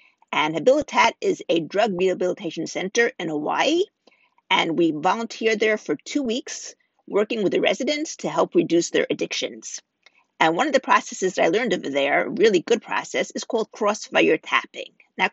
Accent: American